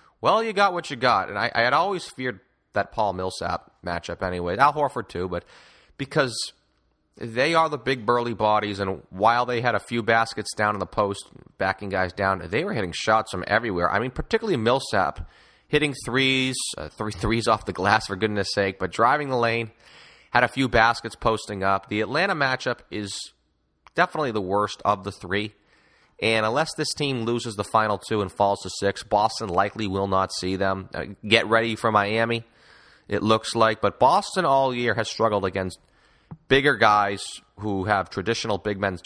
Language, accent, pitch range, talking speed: English, American, 100-125 Hz, 185 wpm